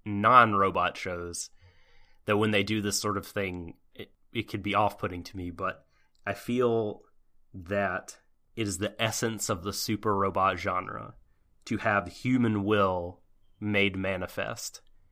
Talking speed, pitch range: 145 wpm, 95-115 Hz